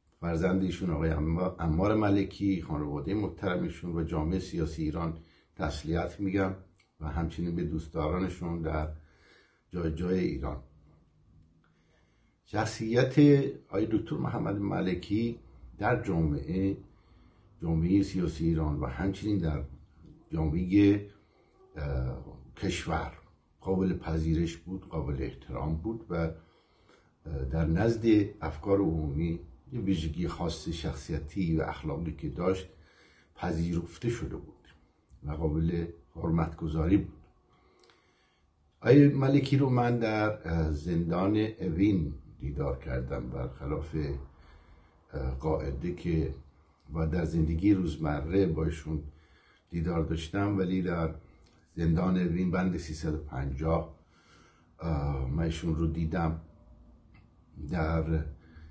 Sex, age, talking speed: male, 60-79, 90 wpm